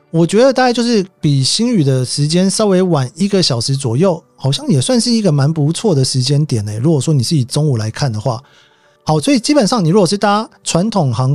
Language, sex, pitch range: Chinese, male, 130-180 Hz